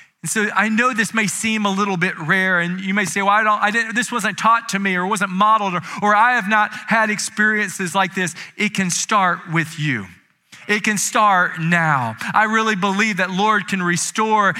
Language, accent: English, American